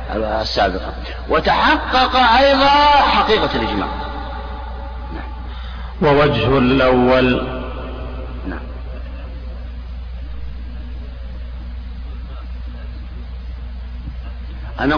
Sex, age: male, 50-69